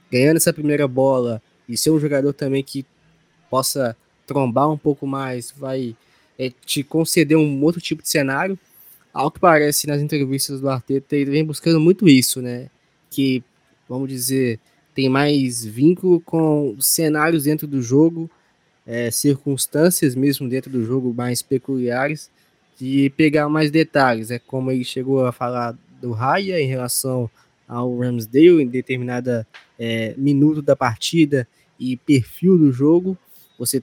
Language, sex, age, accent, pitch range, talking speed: Portuguese, male, 20-39, Brazilian, 125-150 Hz, 150 wpm